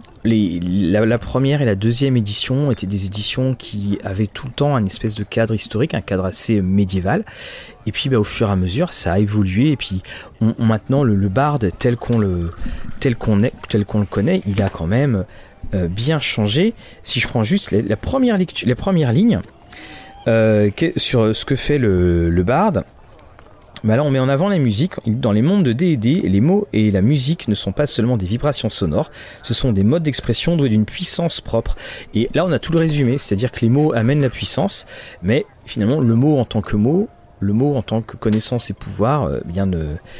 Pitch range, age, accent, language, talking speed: 100-135 Hz, 40-59, French, French, 210 wpm